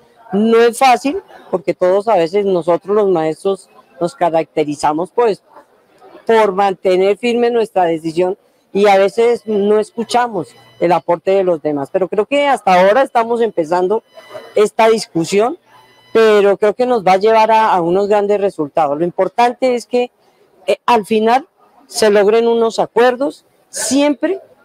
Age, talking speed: 40-59, 150 wpm